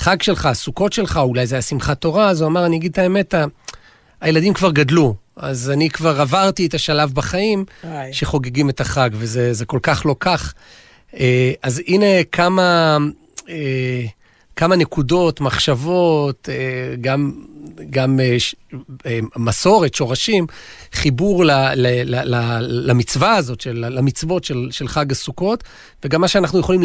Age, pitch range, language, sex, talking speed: 40-59, 130-175 Hz, Hebrew, male, 120 wpm